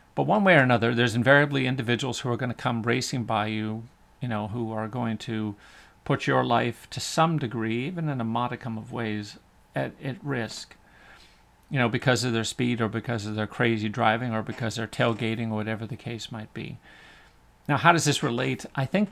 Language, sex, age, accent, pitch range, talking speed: English, male, 40-59, American, 110-130 Hz, 205 wpm